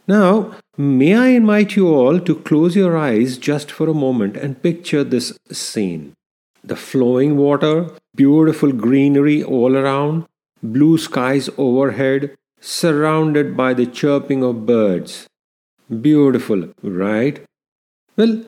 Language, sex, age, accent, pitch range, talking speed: English, male, 50-69, Indian, 130-175 Hz, 120 wpm